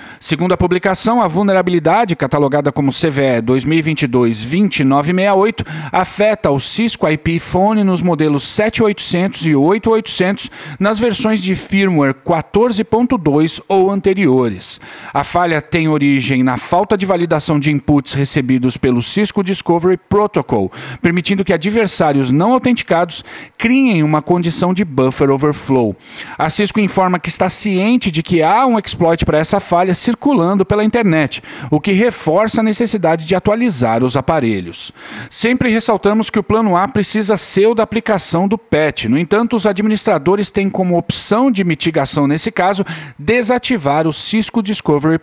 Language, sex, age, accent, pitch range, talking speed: Portuguese, male, 40-59, Brazilian, 150-210 Hz, 140 wpm